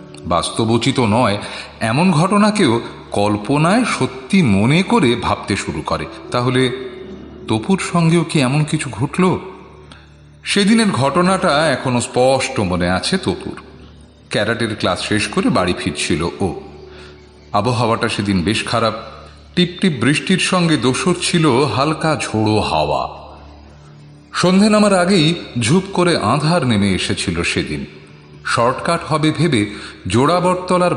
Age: 40-59